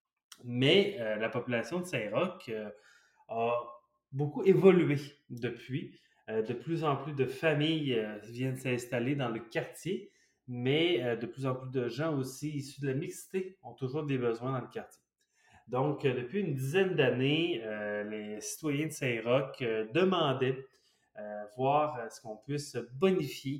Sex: male